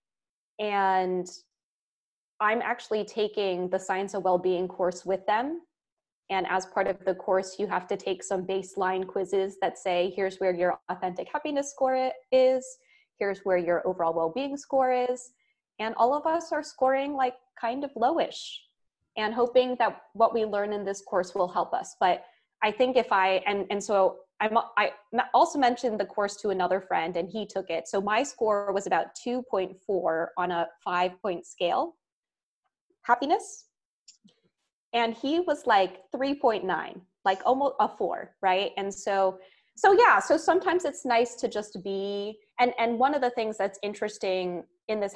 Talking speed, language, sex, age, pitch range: 165 wpm, English, female, 20-39, 185-250 Hz